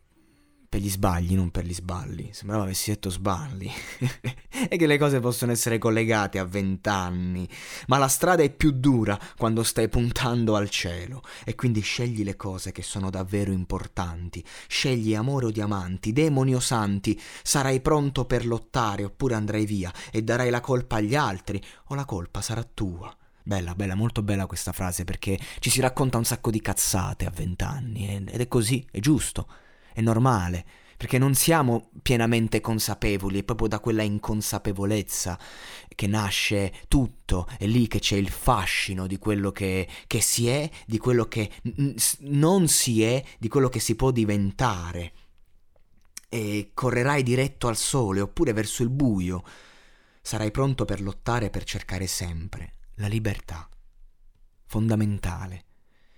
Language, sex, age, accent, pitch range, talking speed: Italian, male, 20-39, native, 95-120 Hz, 155 wpm